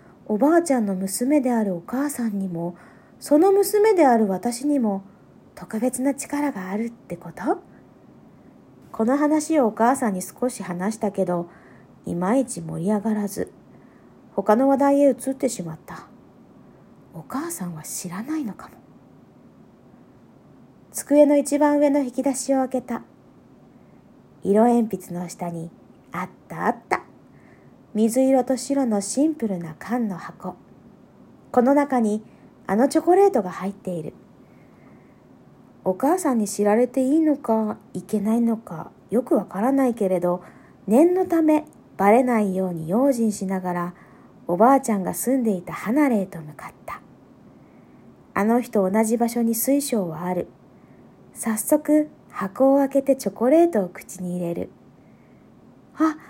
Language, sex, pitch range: Japanese, female, 190-275 Hz